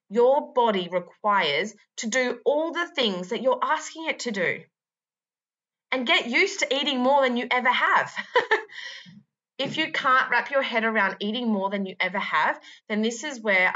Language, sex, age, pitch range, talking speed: English, female, 20-39, 195-245 Hz, 180 wpm